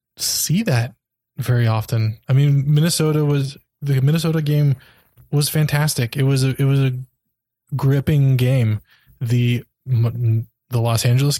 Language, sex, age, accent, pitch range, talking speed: English, male, 20-39, American, 120-140 Hz, 130 wpm